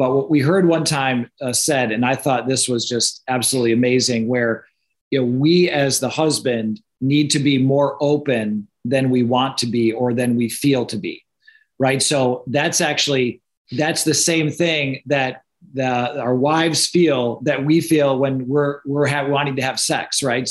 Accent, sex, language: American, male, English